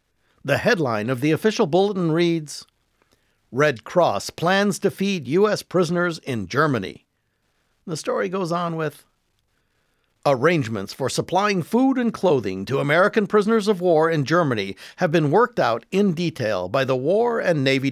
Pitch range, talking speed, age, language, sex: 135-185 Hz, 150 wpm, 60-79, English, male